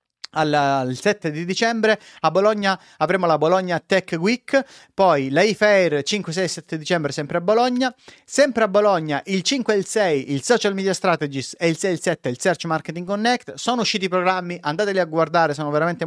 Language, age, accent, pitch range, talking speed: Italian, 30-49, native, 160-215 Hz, 200 wpm